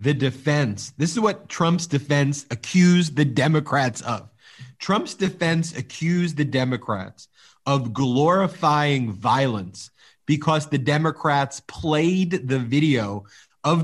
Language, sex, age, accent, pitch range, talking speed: English, male, 30-49, American, 135-175 Hz, 115 wpm